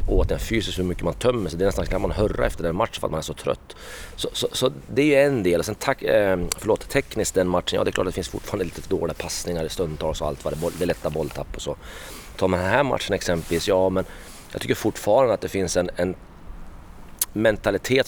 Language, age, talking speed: Swedish, 30-49, 260 wpm